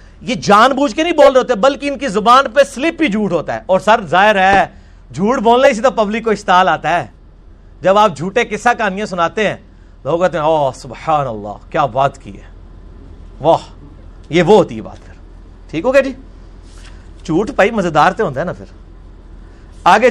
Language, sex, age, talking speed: Urdu, male, 50-69, 190 wpm